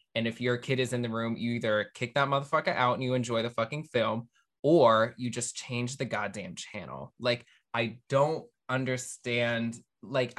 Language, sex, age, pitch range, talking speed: English, male, 20-39, 115-135 Hz, 185 wpm